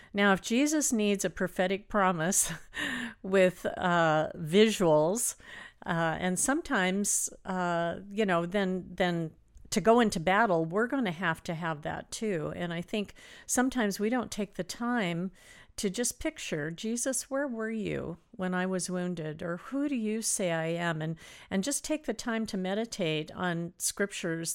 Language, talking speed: English, 165 wpm